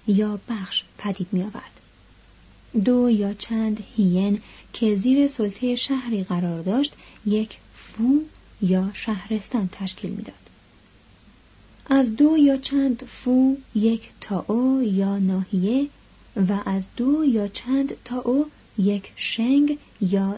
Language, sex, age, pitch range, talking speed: Persian, female, 30-49, 195-255 Hz, 125 wpm